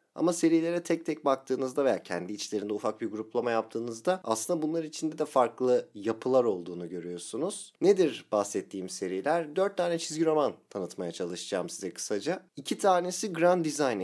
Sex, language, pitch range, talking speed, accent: male, Turkish, 105-155 Hz, 150 wpm, native